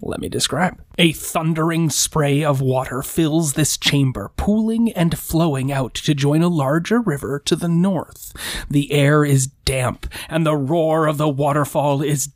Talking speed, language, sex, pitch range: 165 wpm, English, male, 135-155 Hz